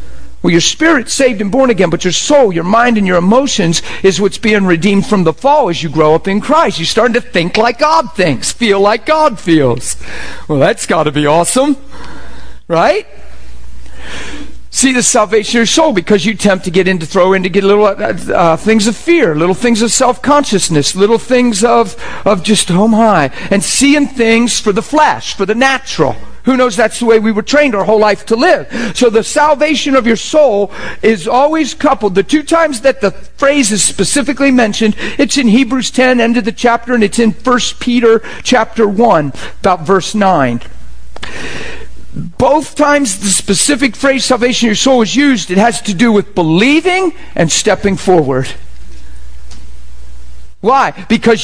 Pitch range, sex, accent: 185-265 Hz, male, American